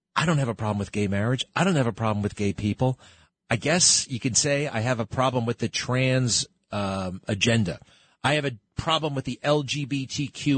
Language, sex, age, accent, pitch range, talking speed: English, male, 40-59, American, 120-150 Hz, 210 wpm